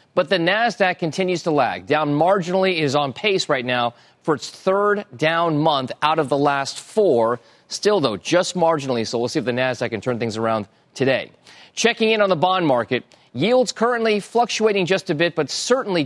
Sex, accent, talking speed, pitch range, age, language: male, American, 195 wpm, 135-185 Hz, 30-49, English